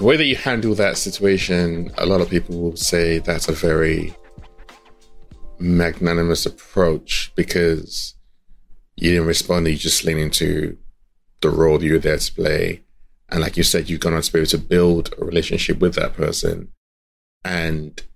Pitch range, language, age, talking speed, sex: 80-95 Hz, English, 20-39, 170 wpm, male